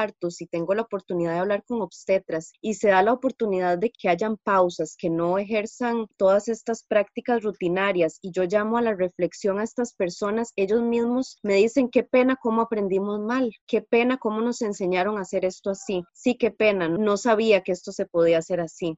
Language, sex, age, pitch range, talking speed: Spanish, female, 20-39, 180-230 Hz, 195 wpm